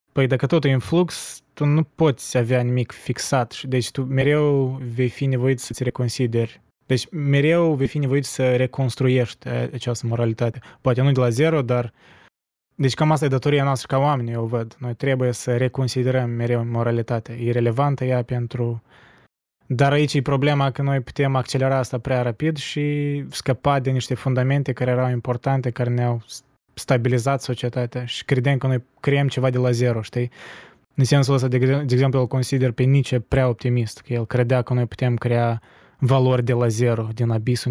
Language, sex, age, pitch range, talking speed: Romanian, male, 20-39, 120-135 Hz, 180 wpm